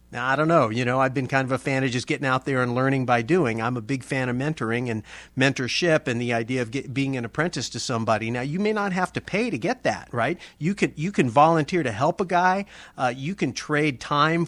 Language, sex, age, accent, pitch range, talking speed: English, male, 40-59, American, 130-155 Hz, 260 wpm